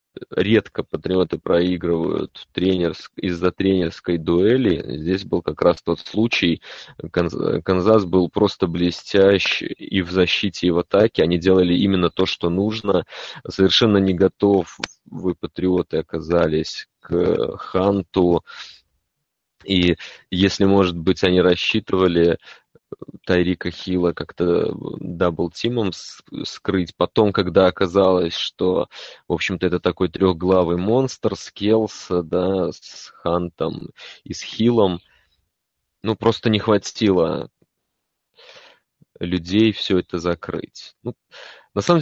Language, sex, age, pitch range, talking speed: Russian, male, 20-39, 90-100 Hz, 110 wpm